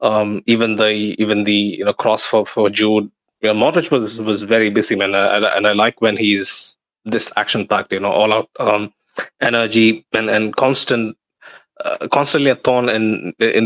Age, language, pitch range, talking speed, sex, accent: 20-39, English, 105-110 Hz, 185 wpm, male, Indian